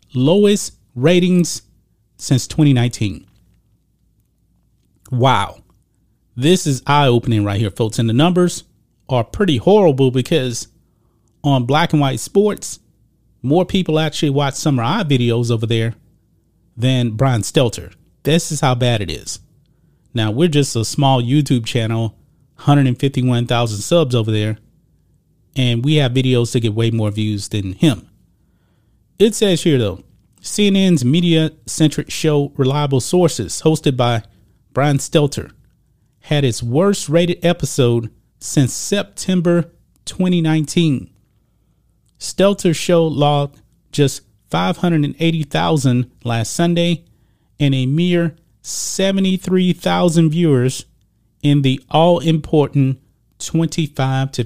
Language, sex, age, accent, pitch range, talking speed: English, male, 30-49, American, 115-160 Hz, 125 wpm